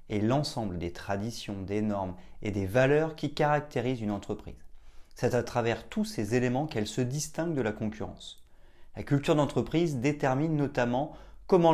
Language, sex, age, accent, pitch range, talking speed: French, male, 30-49, French, 110-150 Hz, 160 wpm